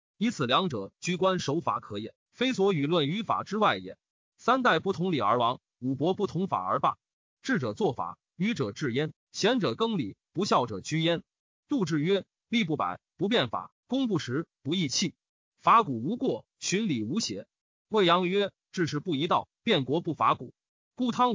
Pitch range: 155-220 Hz